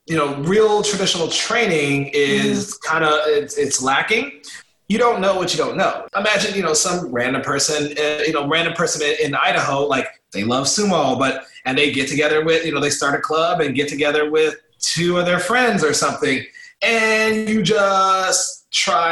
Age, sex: 30-49, male